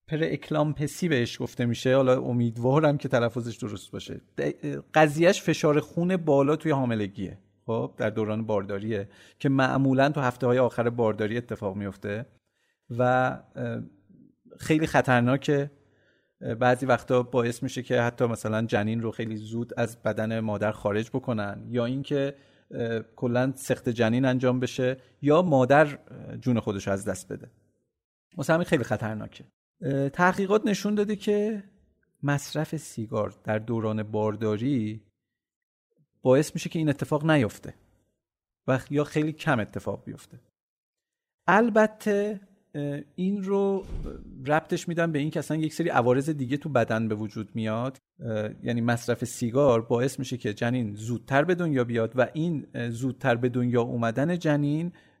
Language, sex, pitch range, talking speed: Persian, male, 115-150 Hz, 135 wpm